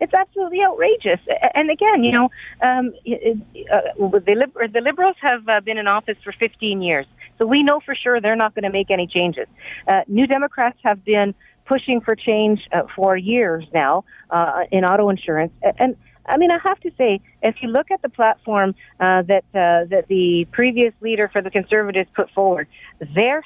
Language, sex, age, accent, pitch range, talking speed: English, female, 50-69, American, 175-240 Hz, 195 wpm